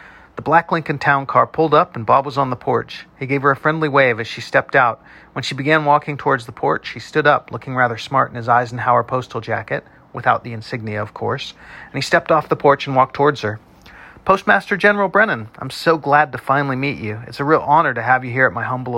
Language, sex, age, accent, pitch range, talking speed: English, male, 40-59, American, 115-150 Hz, 245 wpm